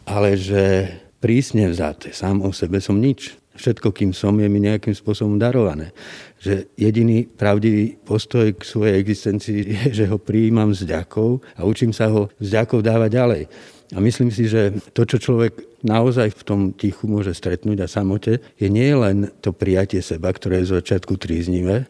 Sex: male